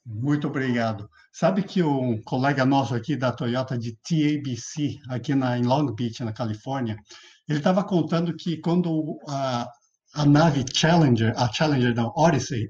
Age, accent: 50-69, Brazilian